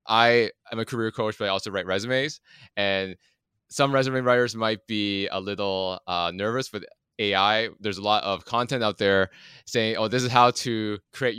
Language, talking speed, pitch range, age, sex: English, 190 wpm, 100-120 Hz, 20-39, male